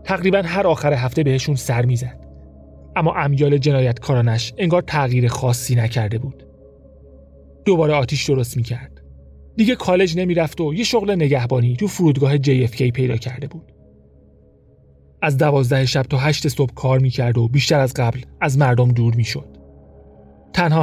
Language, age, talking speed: Persian, 30-49, 140 wpm